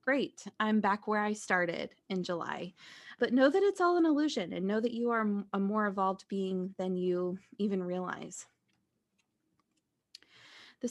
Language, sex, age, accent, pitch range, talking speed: English, female, 20-39, American, 190-245 Hz, 160 wpm